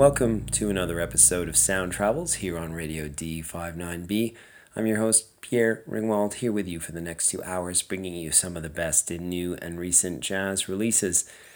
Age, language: 30-49, English